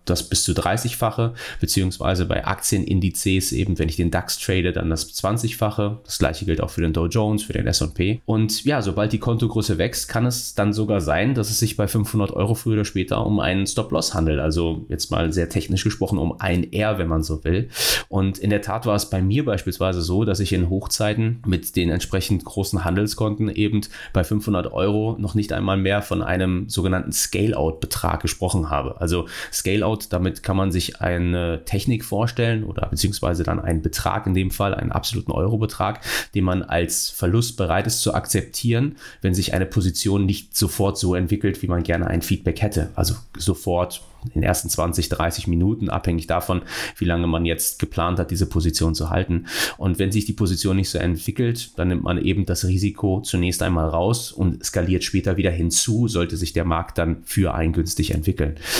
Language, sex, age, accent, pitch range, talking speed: German, male, 30-49, German, 85-105 Hz, 195 wpm